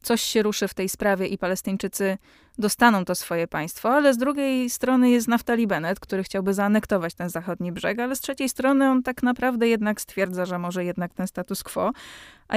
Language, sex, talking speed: Polish, female, 195 wpm